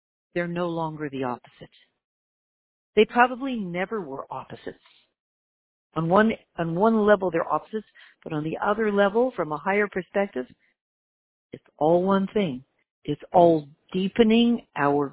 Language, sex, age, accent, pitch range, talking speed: English, female, 50-69, American, 155-205 Hz, 135 wpm